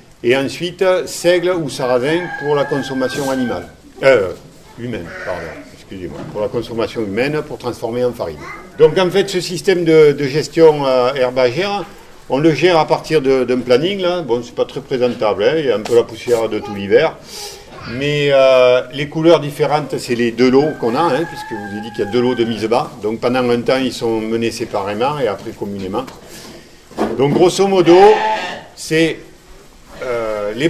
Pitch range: 125-175 Hz